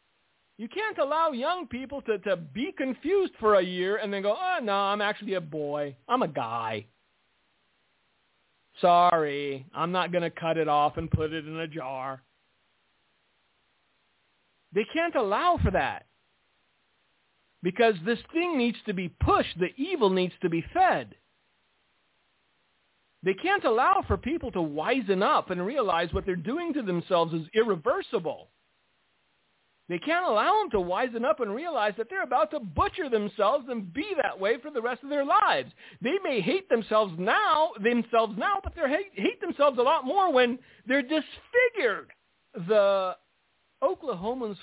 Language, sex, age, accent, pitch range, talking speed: English, male, 50-69, American, 170-280 Hz, 155 wpm